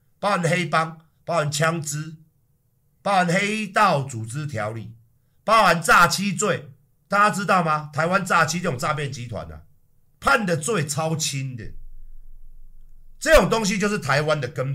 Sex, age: male, 50-69